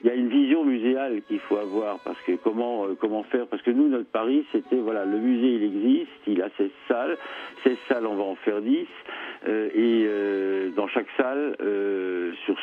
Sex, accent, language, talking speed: male, French, French, 210 wpm